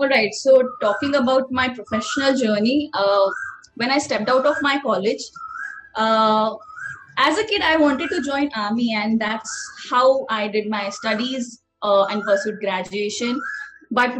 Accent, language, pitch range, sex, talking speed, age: native, Hindi, 225-290 Hz, female, 155 wpm, 20-39